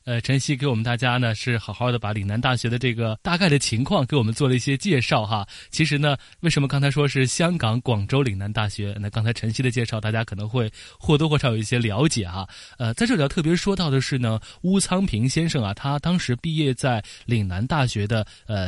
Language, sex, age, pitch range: Chinese, male, 20-39, 110-145 Hz